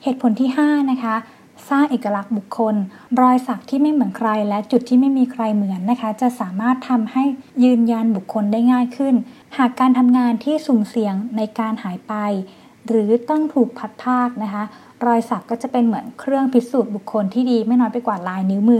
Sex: female